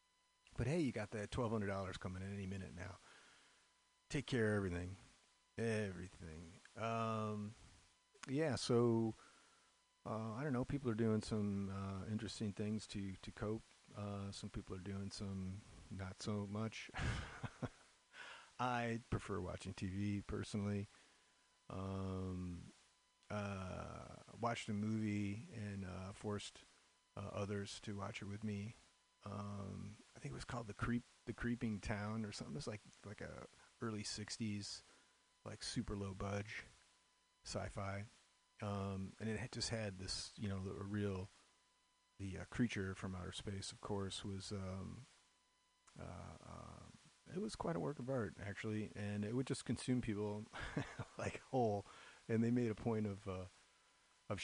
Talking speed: 145 wpm